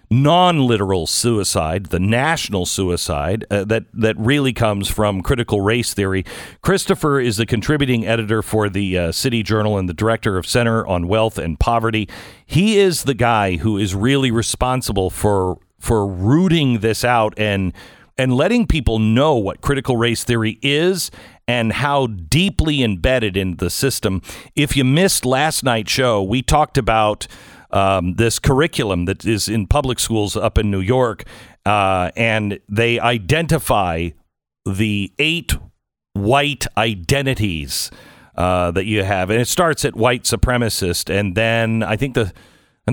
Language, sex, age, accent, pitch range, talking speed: English, male, 50-69, American, 95-130 Hz, 150 wpm